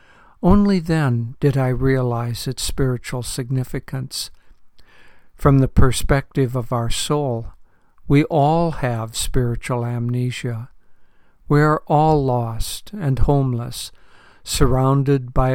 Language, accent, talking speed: English, American, 105 wpm